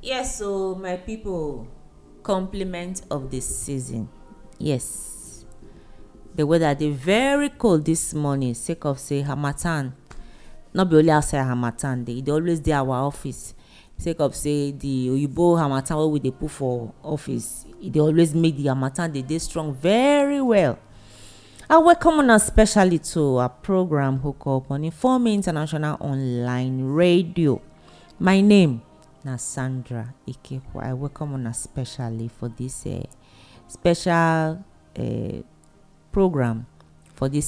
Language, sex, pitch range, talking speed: English, female, 125-170 Hz, 135 wpm